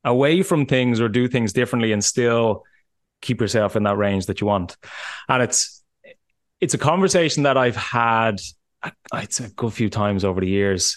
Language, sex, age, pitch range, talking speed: English, male, 20-39, 105-130 Hz, 180 wpm